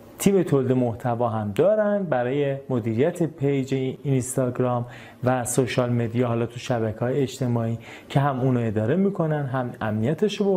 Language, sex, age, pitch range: Persian, male, 30-49, 115-150 Hz